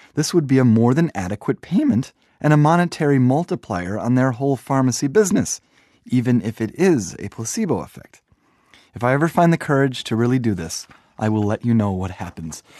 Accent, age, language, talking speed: American, 30-49, English, 190 wpm